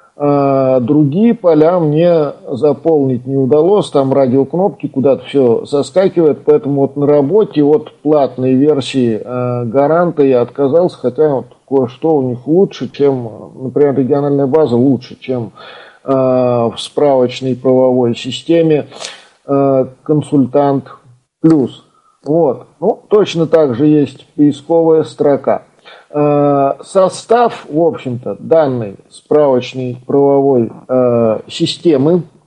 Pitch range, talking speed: 130-160 Hz, 100 wpm